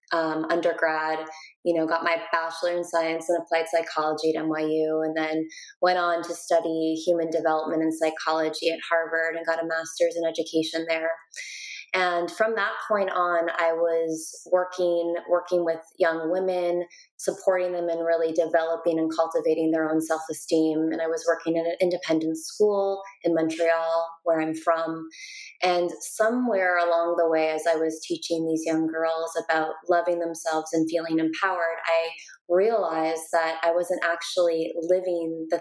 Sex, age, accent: female, 20-39, American